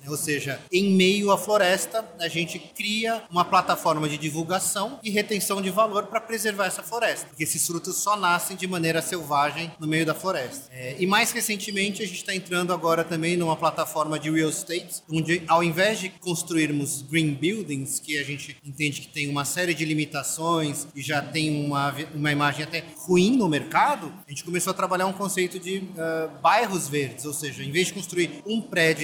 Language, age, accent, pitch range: Portuguese, 30-49, Brazilian, 150-185 Hz